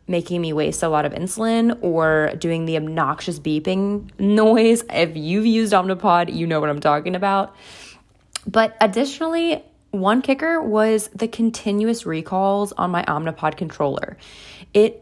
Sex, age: female, 20-39